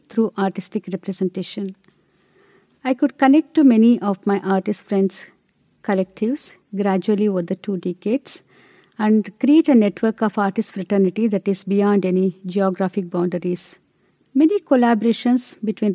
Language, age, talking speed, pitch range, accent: English, 50-69, 130 wpm, 195-245 Hz, Indian